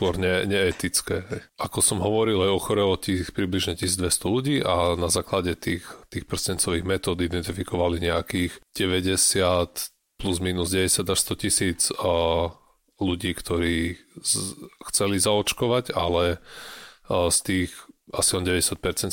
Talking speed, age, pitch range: 120 wpm, 30-49, 85-100 Hz